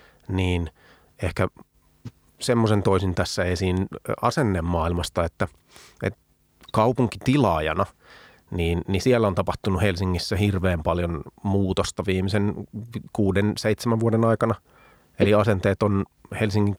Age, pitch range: 30-49, 90-105 Hz